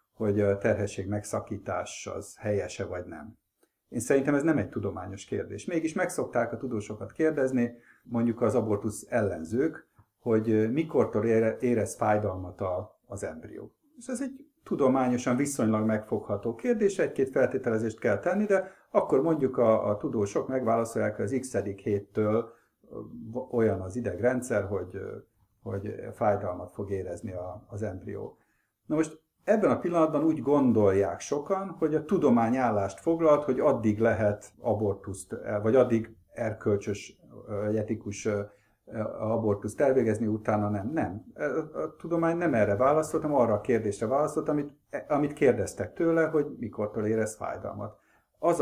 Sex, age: male, 50-69